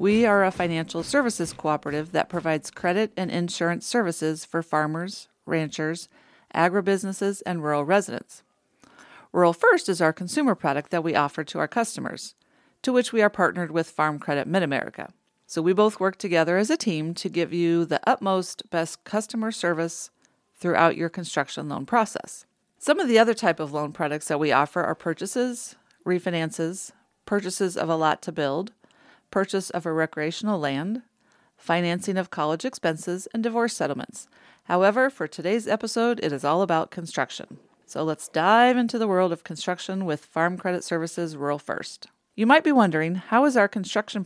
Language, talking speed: English, 170 wpm